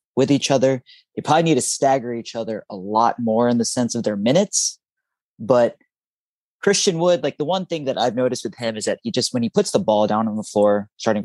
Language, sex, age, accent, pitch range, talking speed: English, male, 20-39, American, 110-135 Hz, 240 wpm